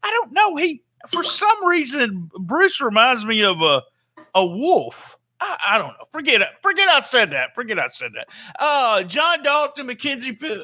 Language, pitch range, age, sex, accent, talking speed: English, 175-270 Hz, 50-69, male, American, 180 wpm